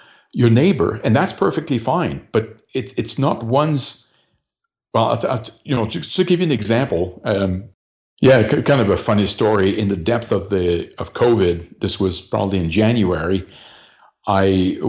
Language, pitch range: English, 95-115 Hz